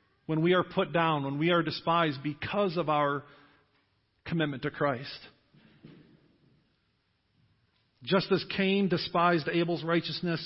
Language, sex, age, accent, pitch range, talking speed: English, male, 40-59, American, 150-180 Hz, 120 wpm